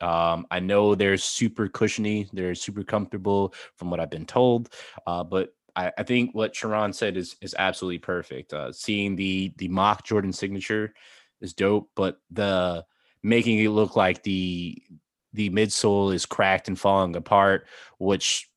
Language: English